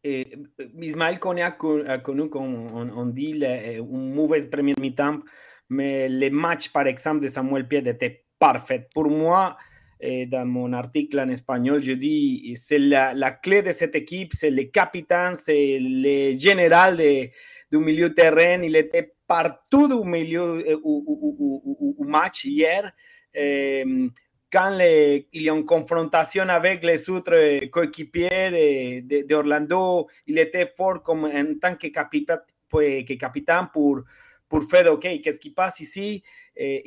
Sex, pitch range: male, 135-170 Hz